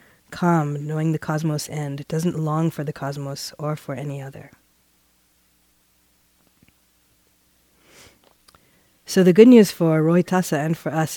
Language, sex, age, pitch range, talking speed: English, female, 40-59, 135-165 Hz, 125 wpm